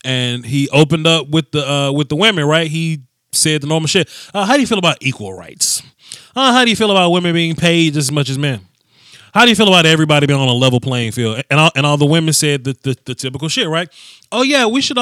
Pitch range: 130-190 Hz